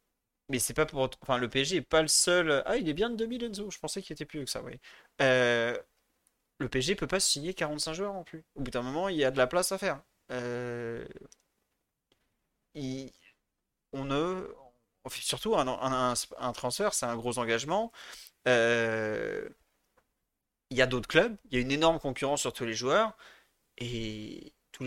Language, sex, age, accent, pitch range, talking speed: French, male, 30-49, French, 125-175 Hz, 195 wpm